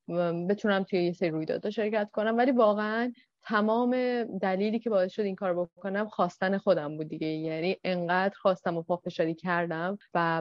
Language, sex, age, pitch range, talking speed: Persian, female, 30-49, 165-200 Hz, 160 wpm